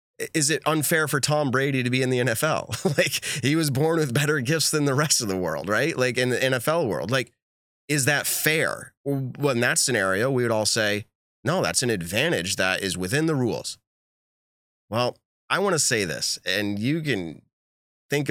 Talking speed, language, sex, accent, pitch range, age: 200 wpm, English, male, American, 95-140 Hz, 30-49